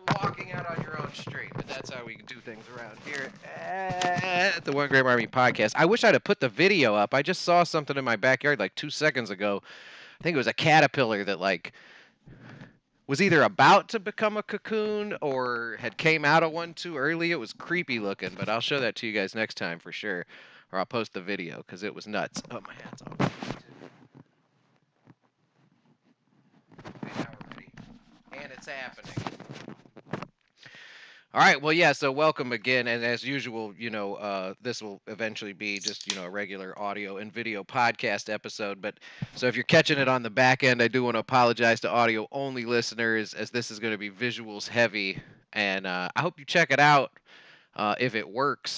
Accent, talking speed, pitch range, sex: American, 195 wpm, 105-150 Hz, male